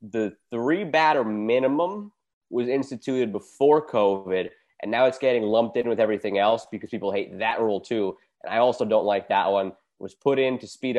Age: 20-39